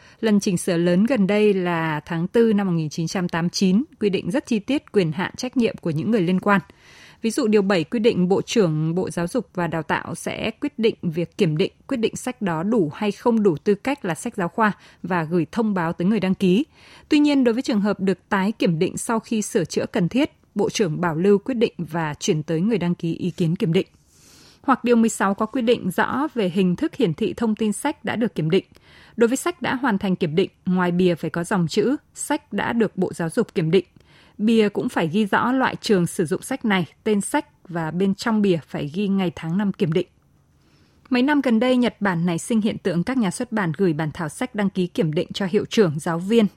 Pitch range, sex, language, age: 175-225 Hz, female, Vietnamese, 20-39